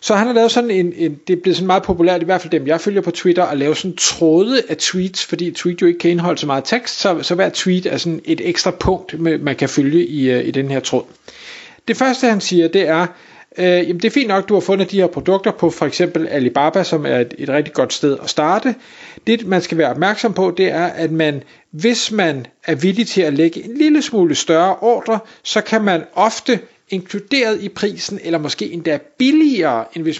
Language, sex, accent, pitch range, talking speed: Danish, male, native, 160-210 Hz, 240 wpm